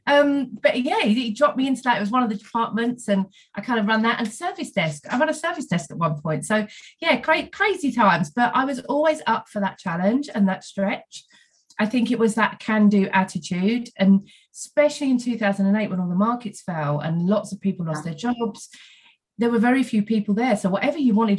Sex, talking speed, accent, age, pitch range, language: female, 225 wpm, British, 30-49, 190-245 Hz, English